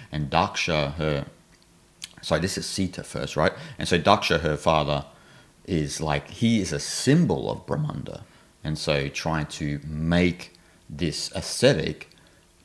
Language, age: English, 30-49